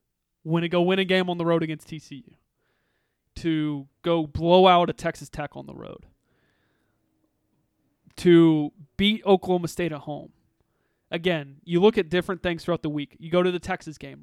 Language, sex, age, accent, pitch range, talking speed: English, male, 20-39, American, 150-175 Hz, 175 wpm